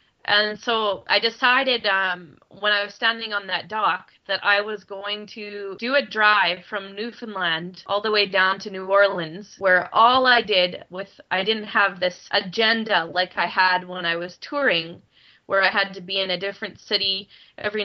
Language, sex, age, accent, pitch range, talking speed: English, female, 20-39, American, 185-220 Hz, 190 wpm